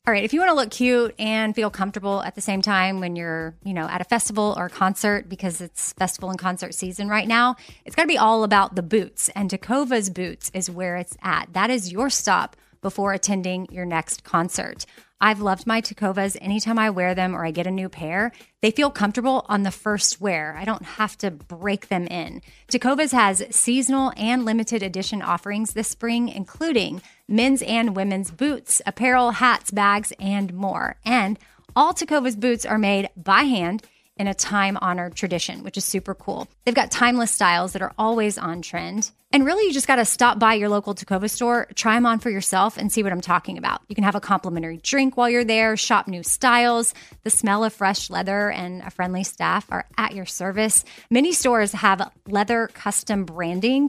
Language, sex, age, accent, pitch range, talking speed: English, female, 30-49, American, 190-240 Hz, 205 wpm